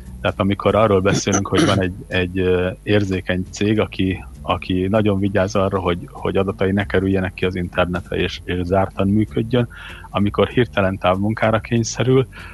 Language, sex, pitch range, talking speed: Hungarian, male, 90-105 Hz, 150 wpm